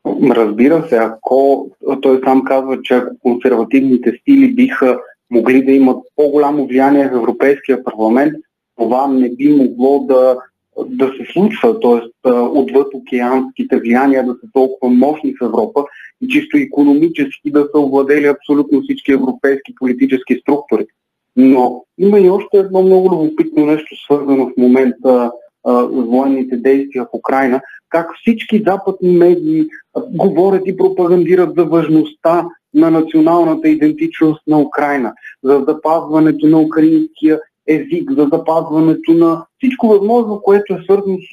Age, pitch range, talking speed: 30-49, 135-200 Hz, 130 wpm